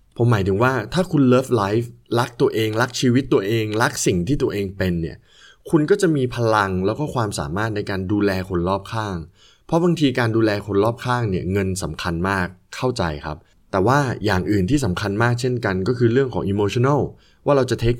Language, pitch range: Thai, 95-130 Hz